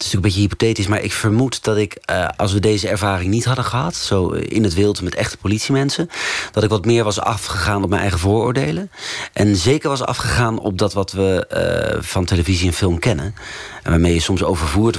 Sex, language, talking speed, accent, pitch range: male, Dutch, 220 wpm, Dutch, 90-115 Hz